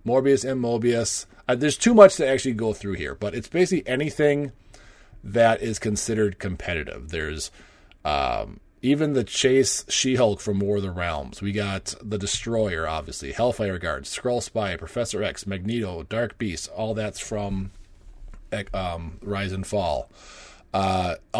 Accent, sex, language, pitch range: American, male, English, 100-125 Hz